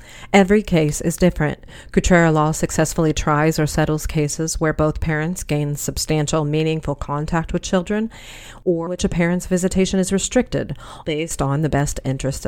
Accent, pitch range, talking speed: American, 140-180 Hz, 155 wpm